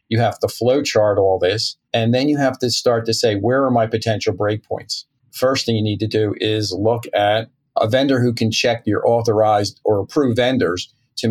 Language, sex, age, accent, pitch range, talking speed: English, male, 50-69, American, 110-125 Hz, 205 wpm